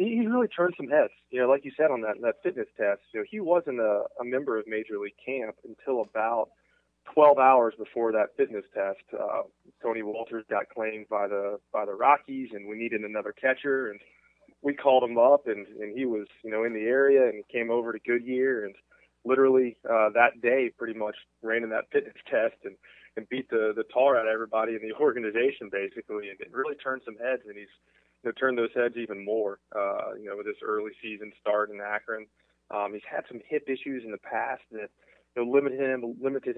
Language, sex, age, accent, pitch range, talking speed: English, male, 20-39, American, 105-130 Hz, 220 wpm